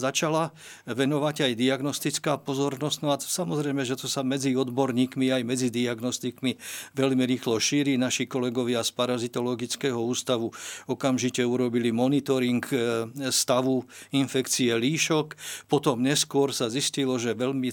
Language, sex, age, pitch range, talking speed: Slovak, male, 50-69, 125-145 Hz, 115 wpm